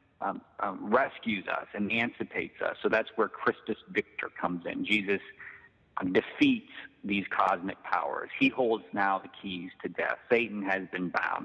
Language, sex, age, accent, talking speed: English, male, 40-59, American, 155 wpm